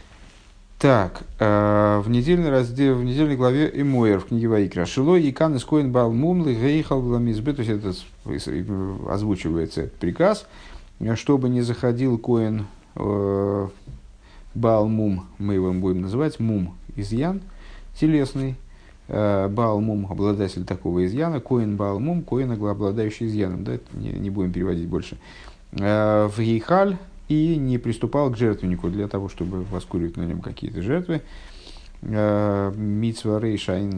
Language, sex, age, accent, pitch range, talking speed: Russian, male, 50-69, native, 100-135 Hz, 130 wpm